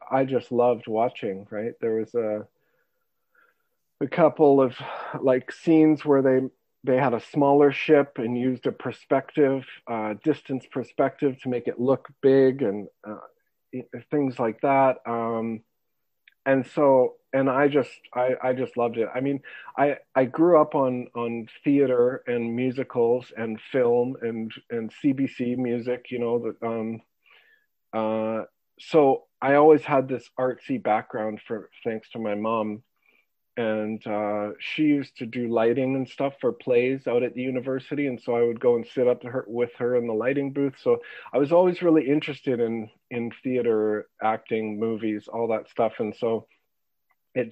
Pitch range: 115-140 Hz